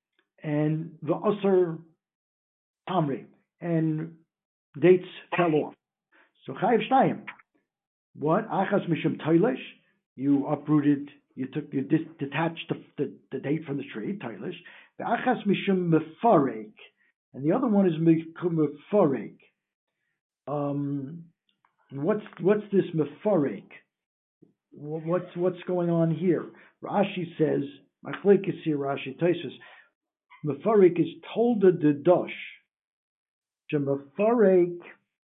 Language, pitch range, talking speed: English, 145-180 Hz, 105 wpm